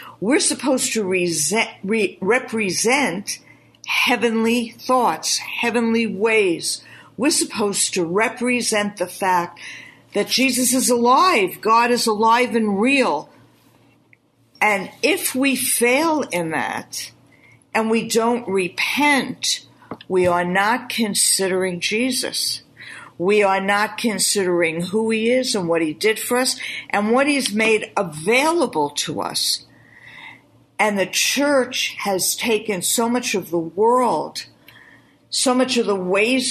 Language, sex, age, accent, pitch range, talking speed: English, female, 50-69, American, 190-245 Hz, 120 wpm